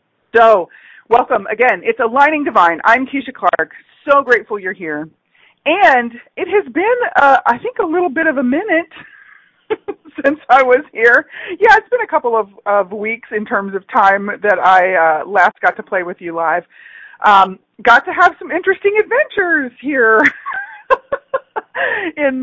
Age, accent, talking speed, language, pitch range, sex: 40-59, American, 165 wpm, English, 180-280 Hz, female